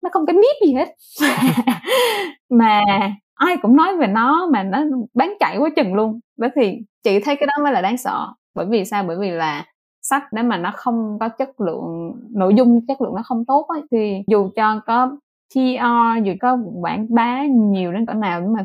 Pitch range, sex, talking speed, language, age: 195-255 Hz, female, 215 wpm, Vietnamese, 20-39